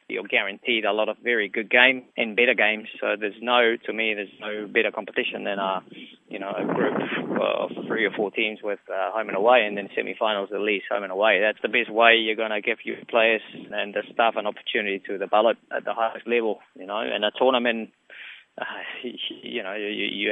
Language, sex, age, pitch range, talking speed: English, male, 20-39, 105-120 Hz, 220 wpm